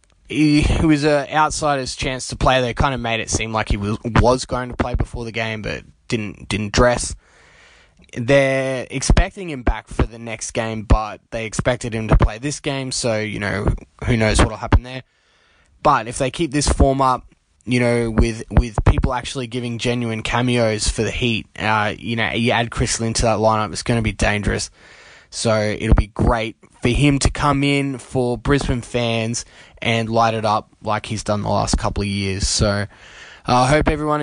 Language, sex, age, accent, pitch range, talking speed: English, male, 20-39, Australian, 110-140 Hz, 195 wpm